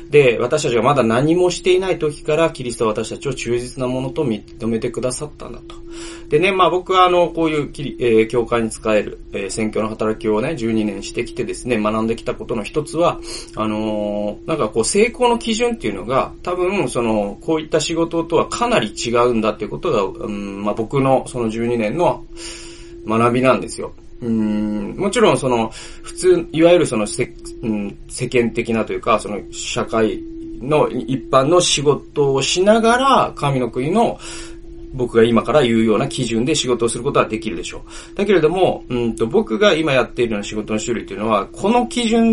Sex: male